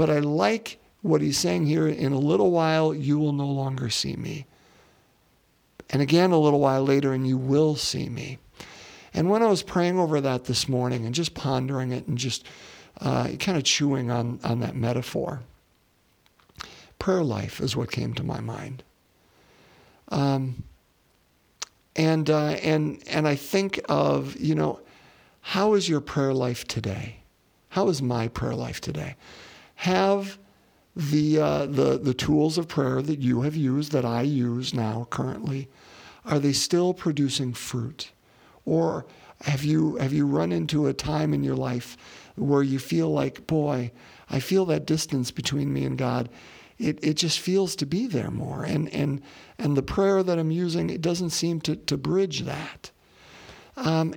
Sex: male